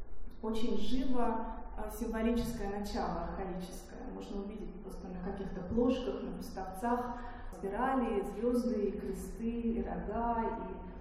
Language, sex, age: Russian, female, 20-39